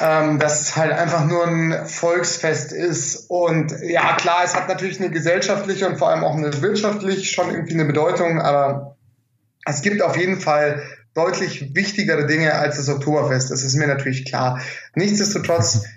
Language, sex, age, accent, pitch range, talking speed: German, male, 20-39, German, 155-195 Hz, 165 wpm